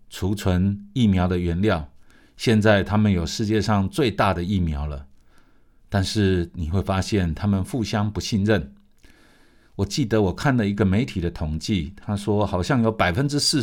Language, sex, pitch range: Chinese, male, 85-110 Hz